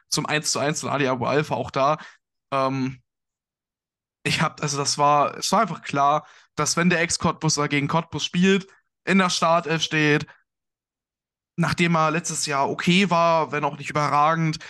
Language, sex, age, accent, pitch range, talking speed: German, male, 20-39, German, 135-160 Hz, 165 wpm